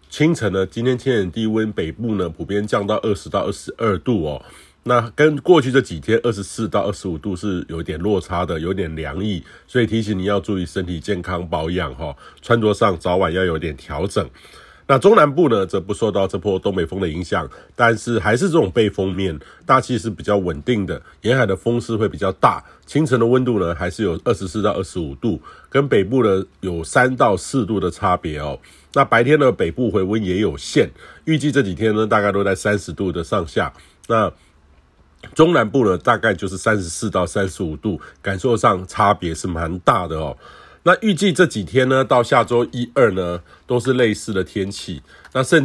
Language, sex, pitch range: Chinese, male, 90-120 Hz